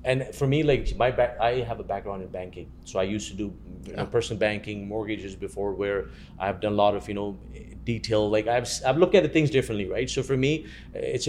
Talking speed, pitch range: 240 wpm, 100-120 Hz